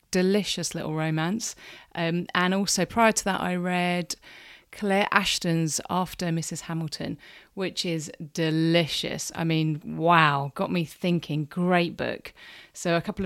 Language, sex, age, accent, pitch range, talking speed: English, female, 30-49, British, 160-205 Hz, 135 wpm